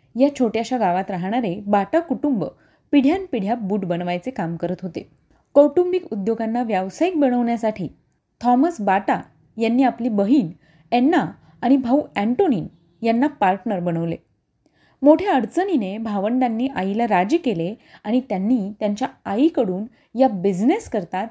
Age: 30-49